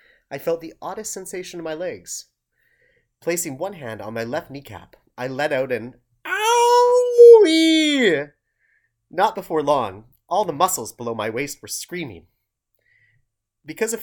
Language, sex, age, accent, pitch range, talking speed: English, male, 30-49, American, 140-225 Hz, 140 wpm